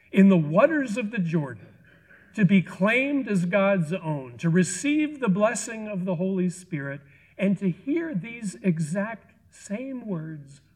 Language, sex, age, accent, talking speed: English, male, 50-69, American, 150 wpm